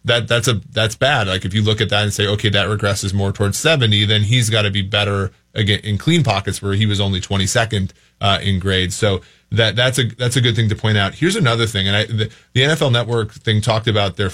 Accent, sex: American, male